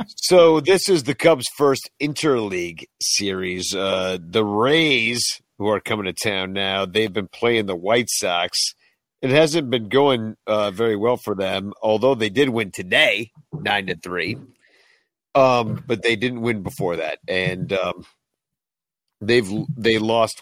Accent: American